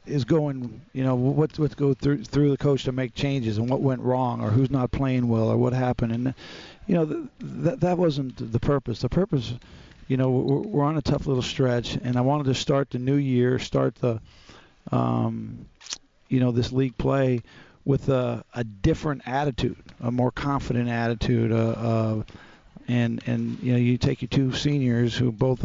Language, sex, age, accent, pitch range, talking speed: English, male, 50-69, American, 120-140 Hz, 200 wpm